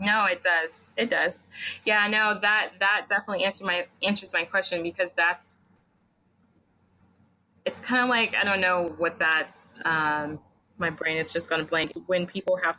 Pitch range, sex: 165-205 Hz, female